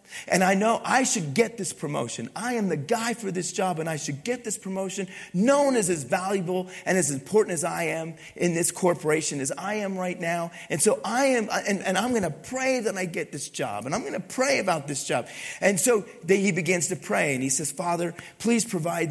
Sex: male